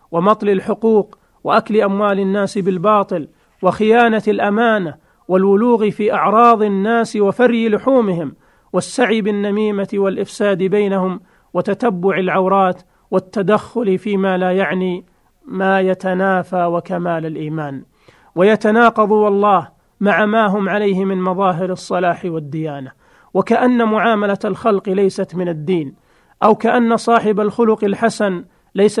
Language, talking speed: Arabic, 105 wpm